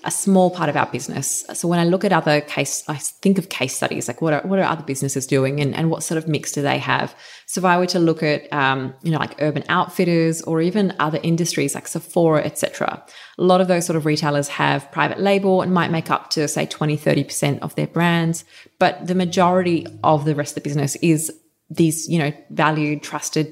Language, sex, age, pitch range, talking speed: English, female, 20-39, 145-170 Hz, 235 wpm